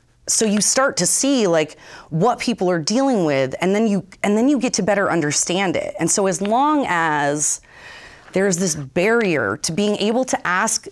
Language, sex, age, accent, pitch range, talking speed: English, female, 30-49, American, 155-215 Hz, 200 wpm